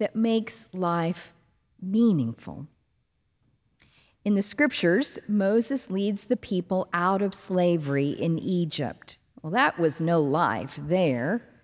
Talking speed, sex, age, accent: 115 wpm, female, 50-69, American